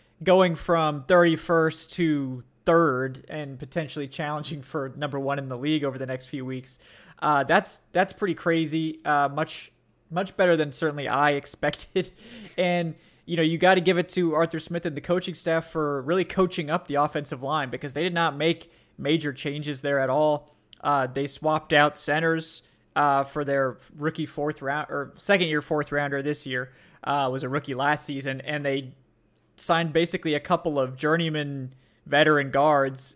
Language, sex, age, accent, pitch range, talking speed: English, male, 20-39, American, 140-165 Hz, 175 wpm